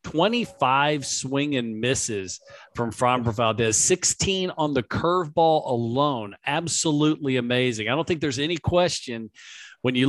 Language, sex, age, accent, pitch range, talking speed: English, male, 50-69, American, 125-165 Hz, 130 wpm